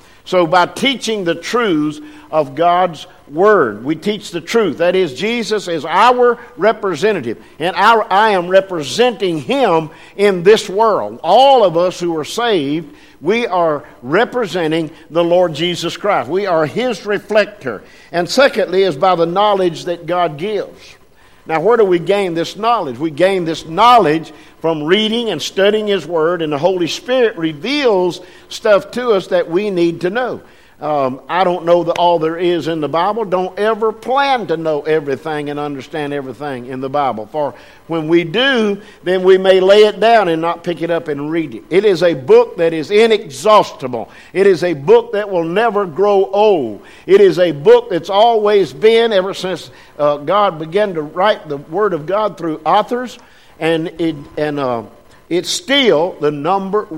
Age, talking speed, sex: 50-69, 175 wpm, male